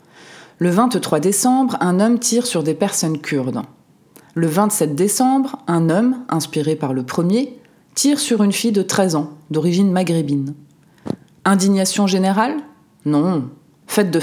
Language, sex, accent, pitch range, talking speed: French, female, French, 165-215 Hz, 140 wpm